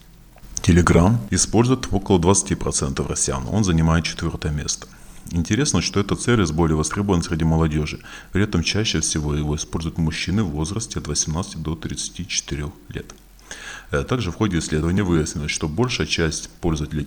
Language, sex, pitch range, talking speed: Russian, male, 80-100 Hz, 140 wpm